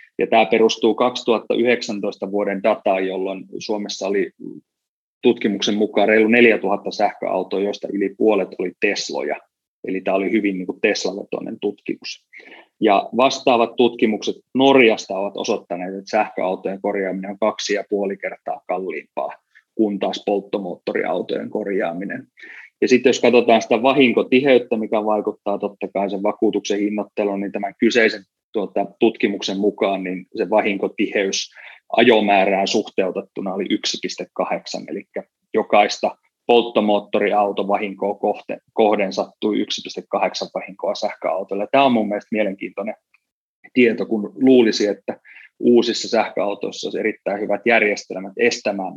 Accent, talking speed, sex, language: native, 115 wpm, male, Finnish